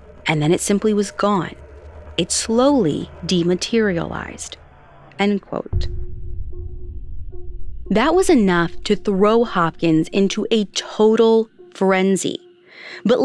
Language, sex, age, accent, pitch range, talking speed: English, female, 30-49, American, 160-230 Hz, 100 wpm